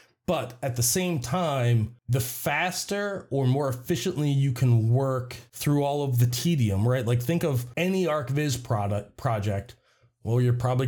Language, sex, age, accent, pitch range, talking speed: English, male, 30-49, American, 120-150 Hz, 160 wpm